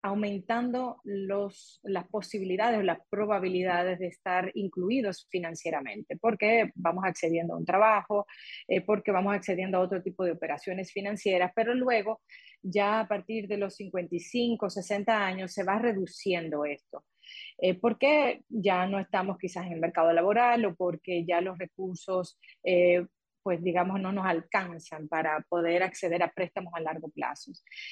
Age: 30-49